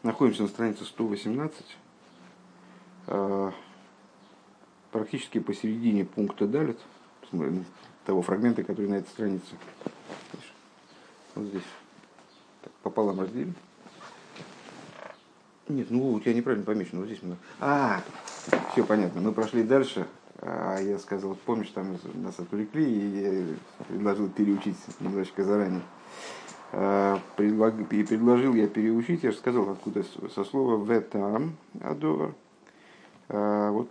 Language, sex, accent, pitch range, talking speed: Russian, male, native, 100-115 Hz, 110 wpm